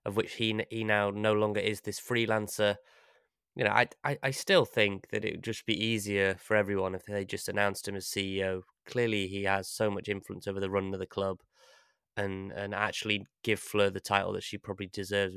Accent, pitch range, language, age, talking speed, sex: British, 100-110 Hz, English, 20-39, 215 wpm, male